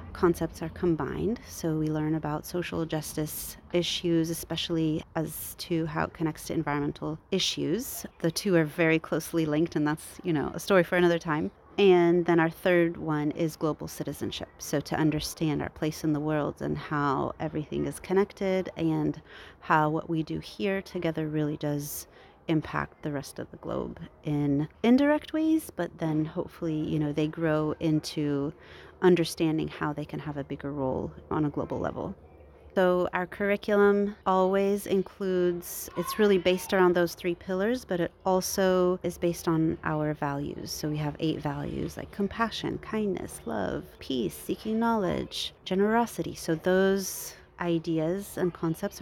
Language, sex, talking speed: English, female, 160 wpm